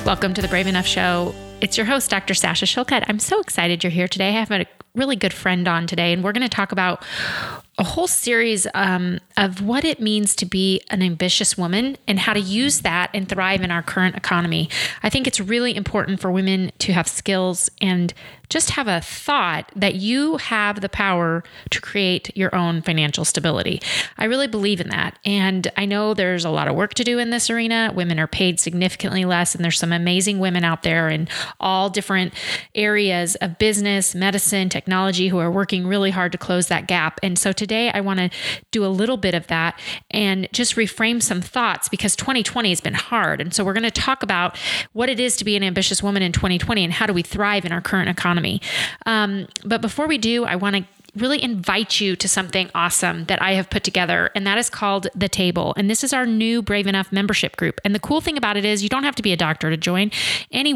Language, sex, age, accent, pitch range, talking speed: English, female, 30-49, American, 180-215 Hz, 225 wpm